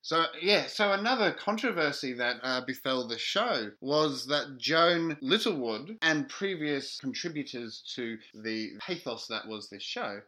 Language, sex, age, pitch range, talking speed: English, male, 30-49, 120-155 Hz, 140 wpm